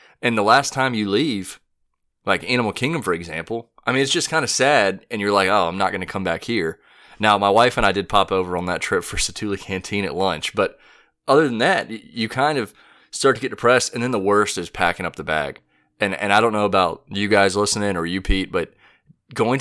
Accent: American